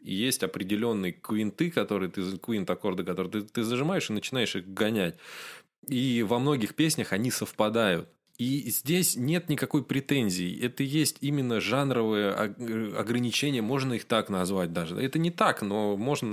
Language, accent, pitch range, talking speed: Russian, native, 95-125 Hz, 145 wpm